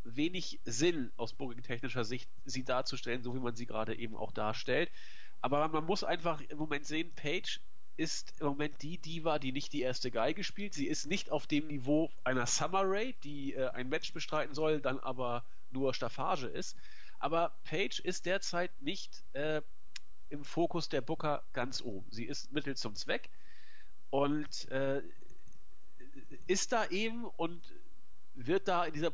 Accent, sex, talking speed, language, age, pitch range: German, male, 165 wpm, German, 40-59, 130-170 Hz